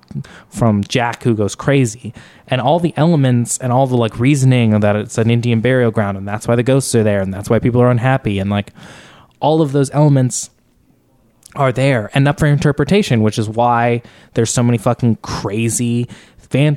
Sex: male